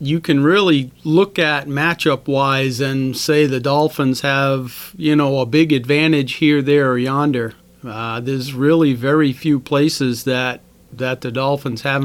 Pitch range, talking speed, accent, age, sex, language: 135-170 Hz, 160 wpm, American, 40-59, male, English